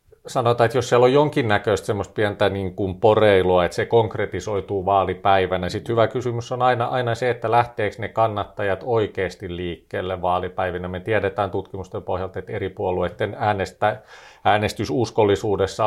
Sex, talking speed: male, 145 wpm